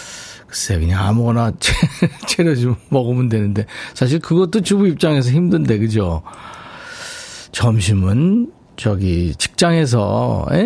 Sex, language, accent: male, Korean, native